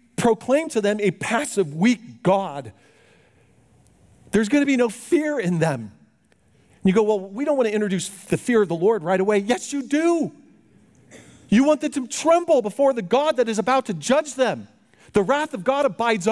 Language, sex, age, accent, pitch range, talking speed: English, male, 40-59, American, 180-240 Hz, 190 wpm